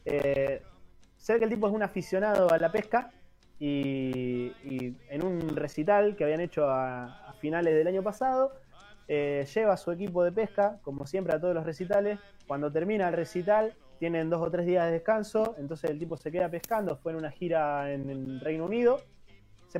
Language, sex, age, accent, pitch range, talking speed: Spanish, male, 20-39, Argentinian, 145-210 Hz, 195 wpm